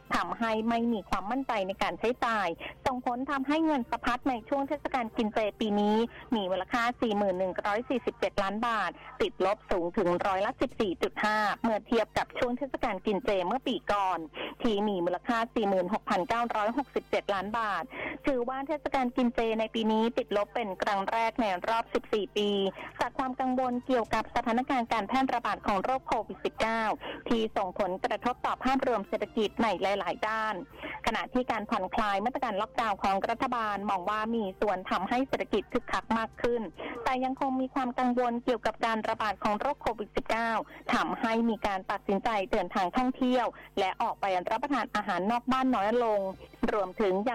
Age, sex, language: 20-39, female, Thai